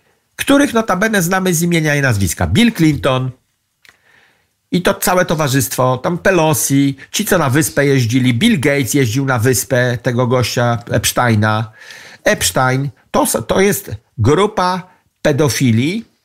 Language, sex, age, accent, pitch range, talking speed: Polish, male, 50-69, native, 110-170 Hz, 125 wpm